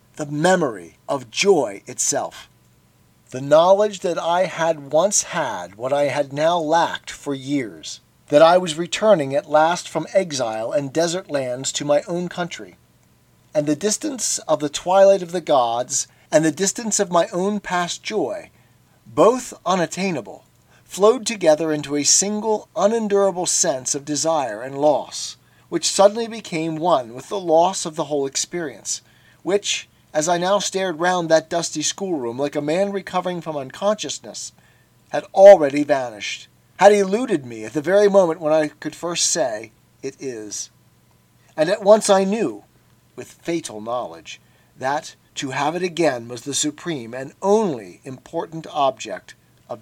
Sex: male